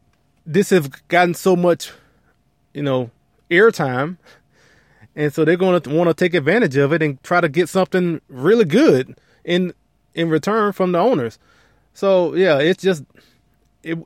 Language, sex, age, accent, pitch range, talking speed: English, male, 20-39, American, 120-160 Hz, 160 wpm